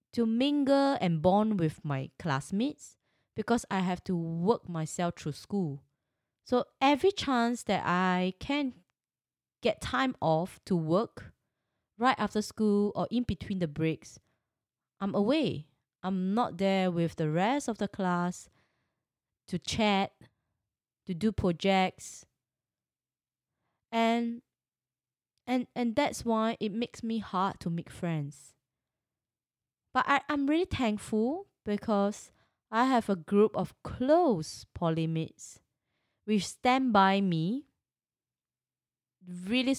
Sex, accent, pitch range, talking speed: female, Malaysian, 160-235 Hz, 120 wpm